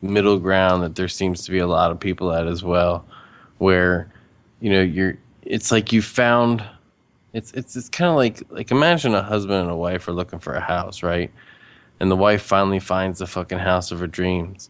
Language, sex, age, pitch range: English, male, 20-39, 90-110 Hz